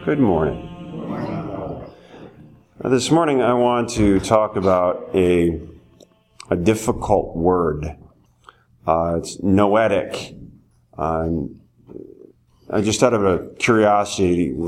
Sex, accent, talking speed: male, American, 95 wpm